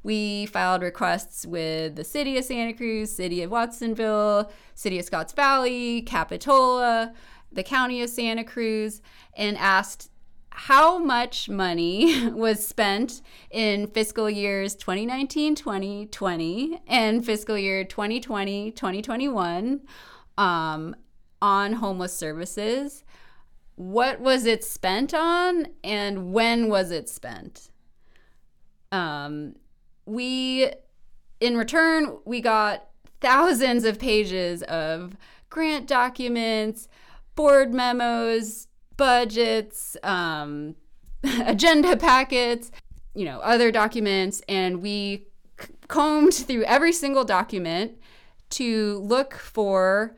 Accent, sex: American, female